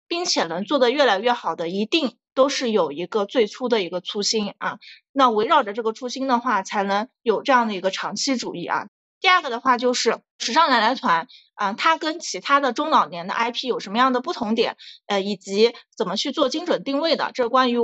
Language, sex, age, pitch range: Chinese, female, 20-39, 210-280 Hz